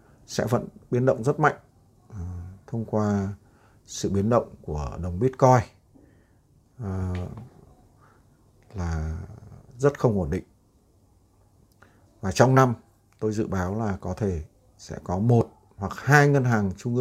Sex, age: male, 60-79